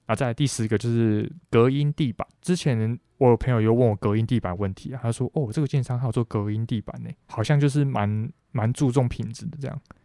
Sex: male